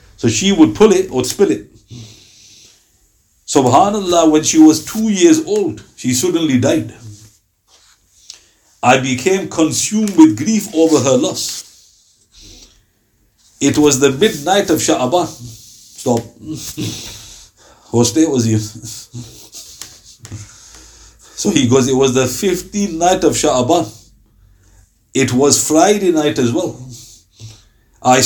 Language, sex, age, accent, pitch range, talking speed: English, male, 60-79, Indian, 110-160 Hz, 115 wpm